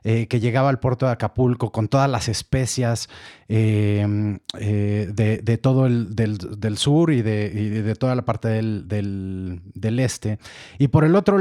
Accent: Mexican